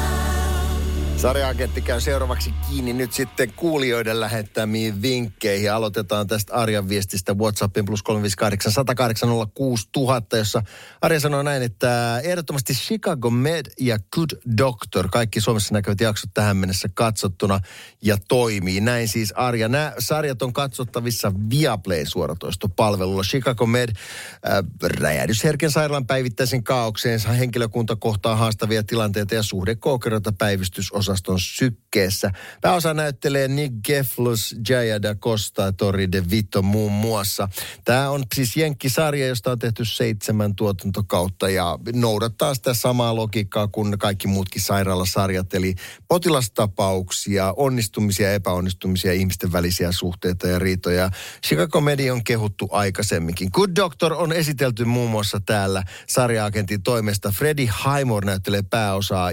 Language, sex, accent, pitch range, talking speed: Finnish, male, native, 100-125 Hz, 120 wpm